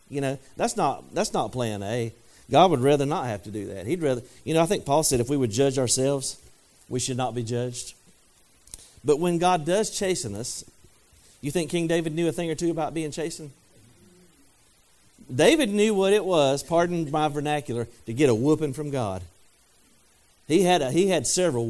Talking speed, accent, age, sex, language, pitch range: 200 wpm, American, 50-69, male, English, 115-160 Hz